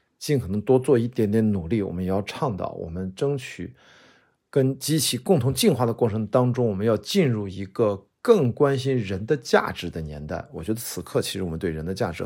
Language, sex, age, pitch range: Chinese, male, 50-69, 95-125 Hz